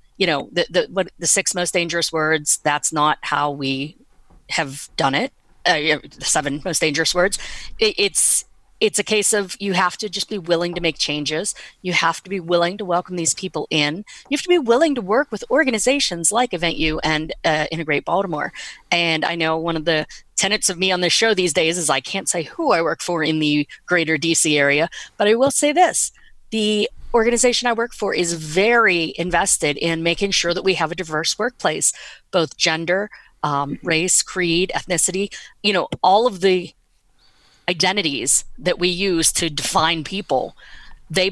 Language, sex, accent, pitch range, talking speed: English, female, American, 160-200 Hz, 190 wpm